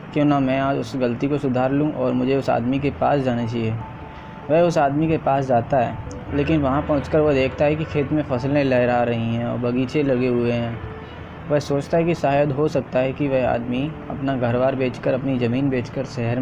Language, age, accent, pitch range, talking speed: Hindi, 20-39, native, 125-145 Hz, 225 wpm